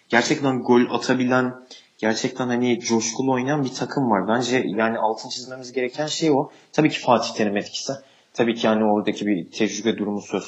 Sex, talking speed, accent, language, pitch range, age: male, 170 wpm, native, Turkish, 110-135 Hz, 30-49